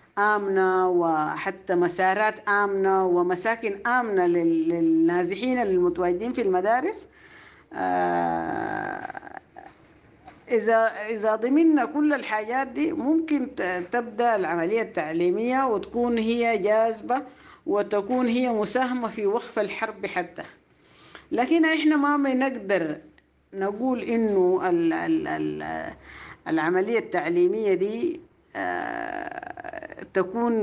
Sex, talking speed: female, 80 wpm